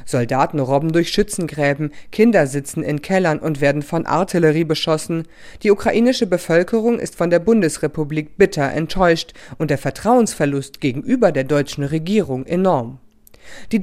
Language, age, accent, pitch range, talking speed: German, 40-59, German, 145-200 Hz, 135 wpm